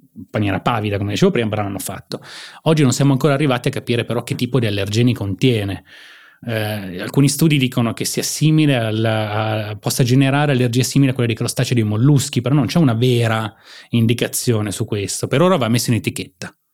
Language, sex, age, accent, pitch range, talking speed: Italian, male, 20-39, native, 105-130 Hz, 195 wpm